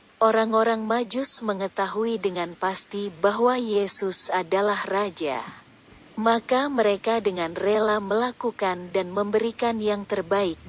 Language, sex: Indonesian, female